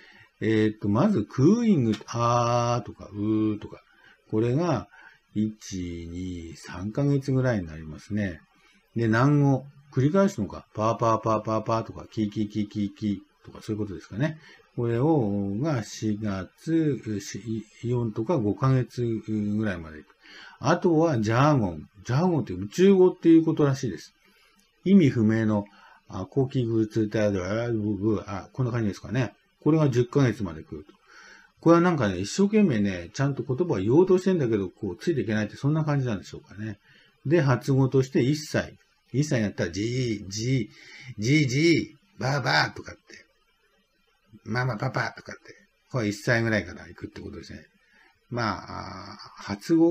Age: 50-69